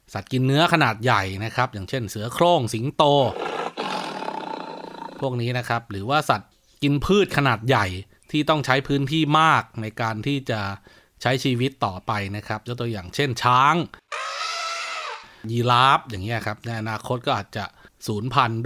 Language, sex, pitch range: Thai, male, 110-140 Hz